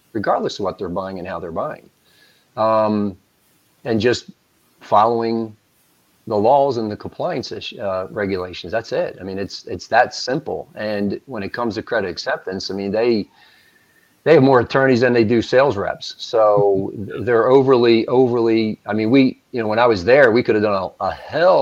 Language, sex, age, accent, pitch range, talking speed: English, male, 40-59, American, 95-110 Hz, 185 wpm